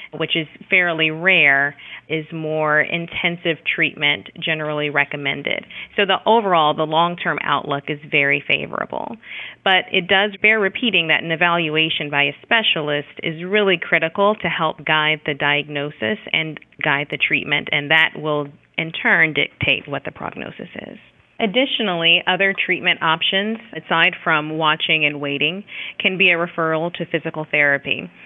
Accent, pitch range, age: American, 150-180 Hz, 30-49